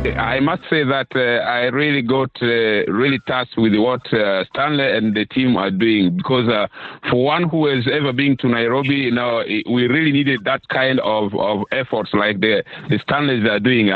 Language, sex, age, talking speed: English, male, 50-69, 200 wpm